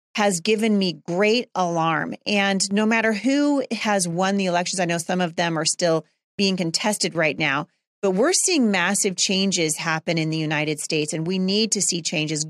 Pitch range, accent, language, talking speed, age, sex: 165-210 Hz, American, English, 190 wpm, 40-59, female